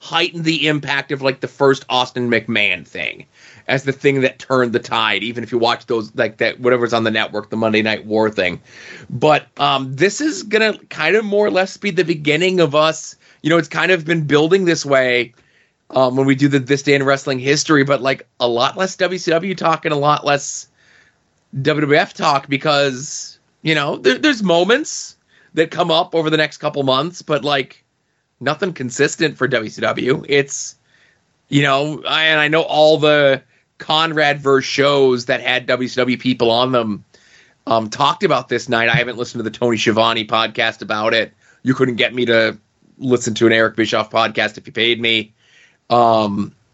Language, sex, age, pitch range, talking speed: English, male, 30-49, 120-155 Hz, 190 wpm